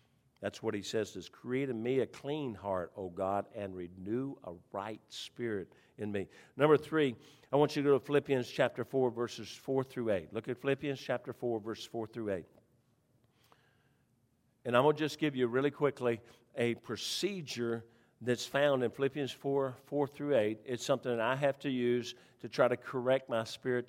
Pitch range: 120-150 Hz